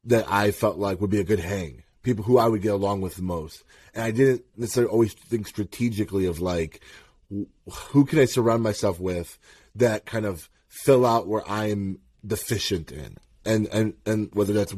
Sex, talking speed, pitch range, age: male, 190 wpm, 105-135 Hz, 20-39